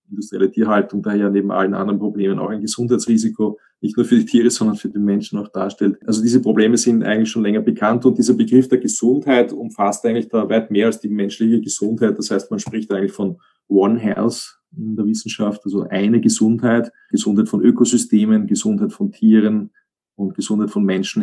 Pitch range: 100-120 Hz